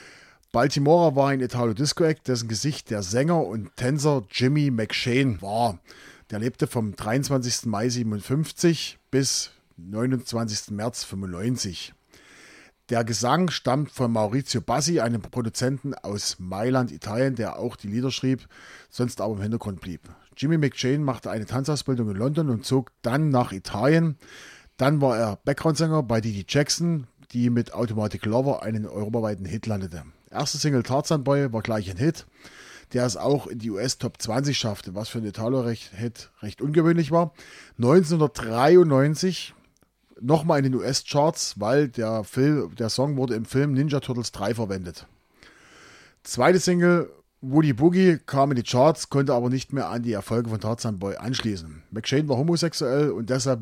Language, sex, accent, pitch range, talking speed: German, male, German, 110-140 Hz, 150 wpm